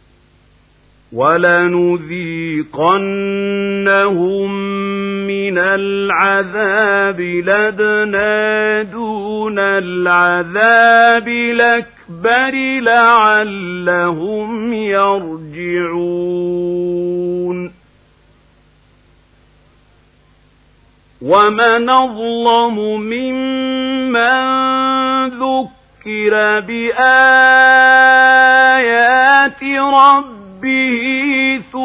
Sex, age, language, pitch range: male, 50-69, Arabic, 200-265 Hz